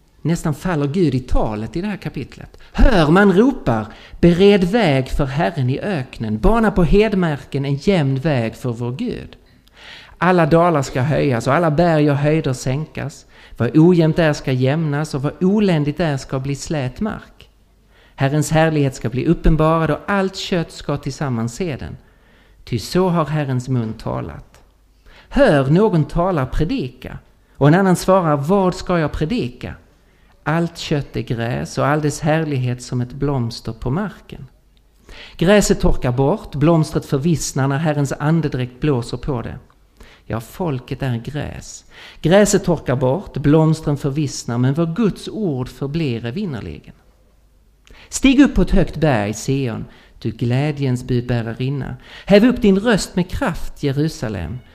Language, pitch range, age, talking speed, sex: Swedish, 125-170 Hz, 50-69, 145 wpm, male